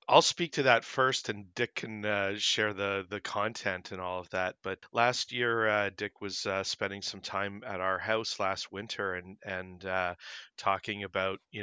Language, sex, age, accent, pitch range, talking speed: English, male, 40-59, American, 95-110 Hz, 195 wpm